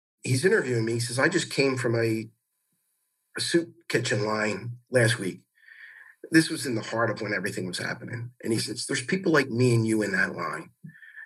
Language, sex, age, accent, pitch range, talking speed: English, male, 50-69, American, 110-140 Hz, 205 wpm